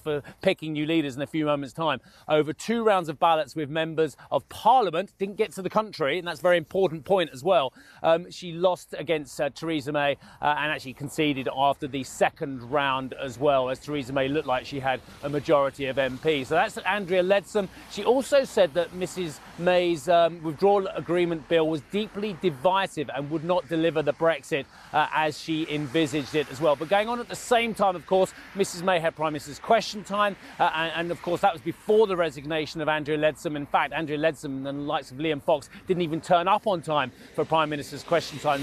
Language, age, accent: English, 30-49, British